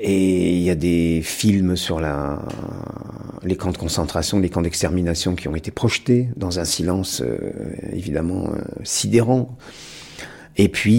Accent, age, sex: French, 50-69, male